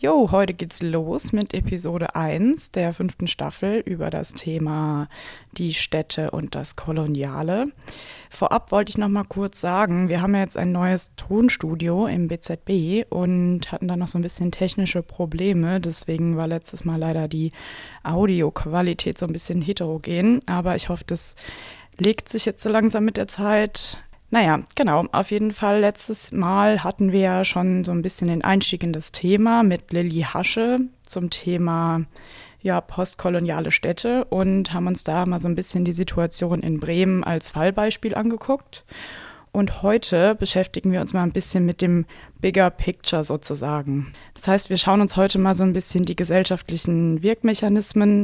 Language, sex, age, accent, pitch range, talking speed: German, female, 20-39, German, 170-205 Hz, 165 wpm